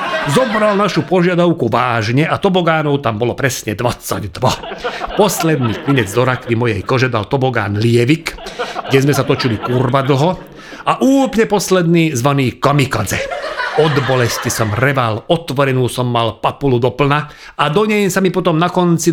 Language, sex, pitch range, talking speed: Slovak, male, 120-165 Hz, 145 wpm